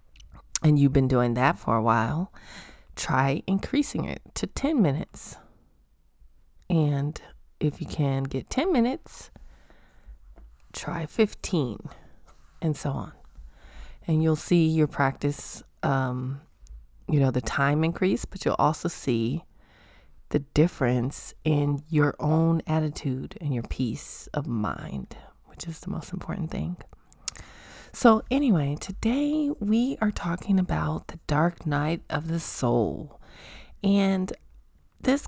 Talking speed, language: 125 wpm, English